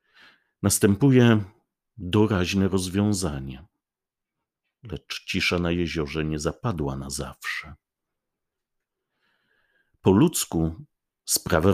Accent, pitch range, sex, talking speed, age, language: native, 80-105 Hz, male, 70 wpm, 50-69, Polish